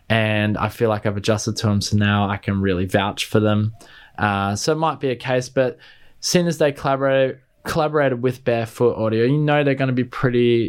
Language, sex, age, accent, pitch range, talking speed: English, male, 20-39, Australian, 110-140 Hz, 215 wpm